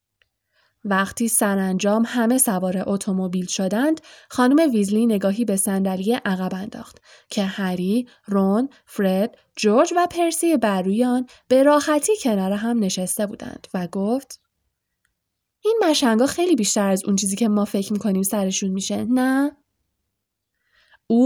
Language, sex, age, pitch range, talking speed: Persian, female, 10-29, 195-275 Hz, 125 wpm